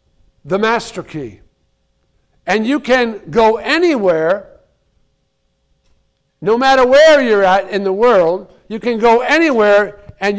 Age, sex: 60-79, male